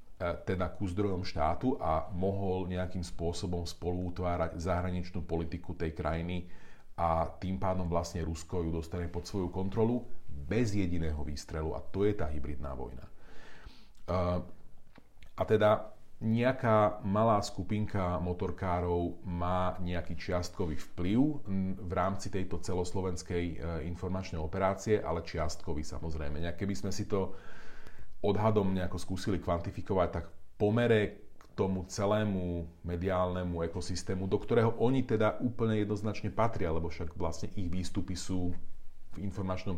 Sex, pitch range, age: male, 85-95 Hz, 40-59